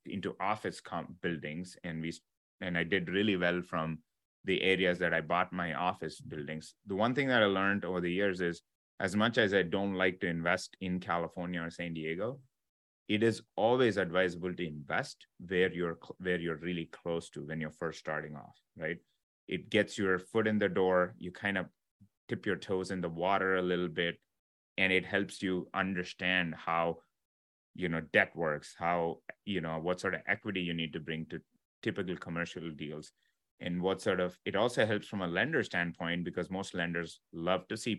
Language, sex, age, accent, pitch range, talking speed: English, male, 30-49, Indian, 80-95 Hz, 195 wpm